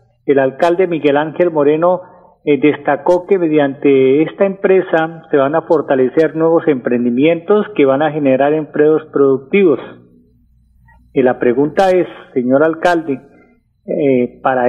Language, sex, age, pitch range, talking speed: Spanish, male, 40-59, 140-175 Hz, 125 wpm